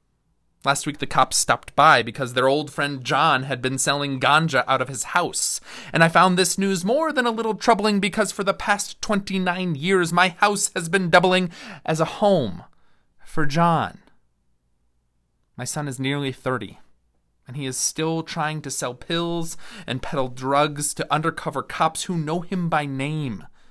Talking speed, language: 175 wpm, English